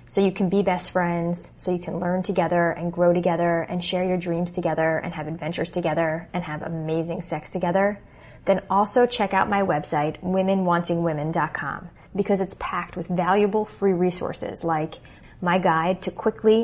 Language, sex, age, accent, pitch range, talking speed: English, female, 20-39, American, 170-195 Hz, 170 wpm